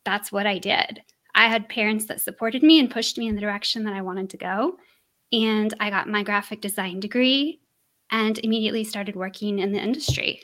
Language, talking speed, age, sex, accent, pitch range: English, 200 wpm, 10-29, female, American, 205-240 Hz